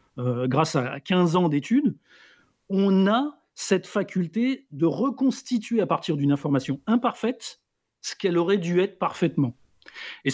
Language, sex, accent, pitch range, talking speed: French, male, French, 155-215 Hz, 140 wpm